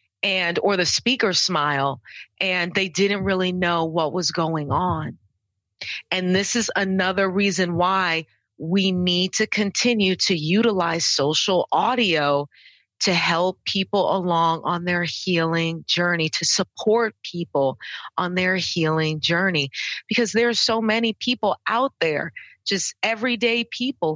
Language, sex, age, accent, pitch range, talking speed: English, female, 30-49, American, 165-215 Hz, 135 wpm